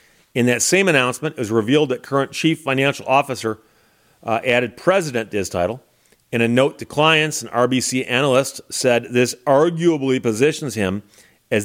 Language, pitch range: English, 115-135 Hz